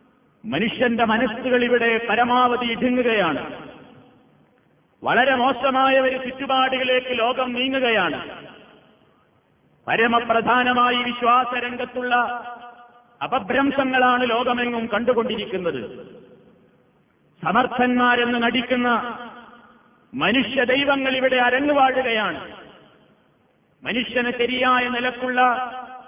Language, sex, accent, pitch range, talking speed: Malayalam, male, native, 245-260 Hz, 55 wpm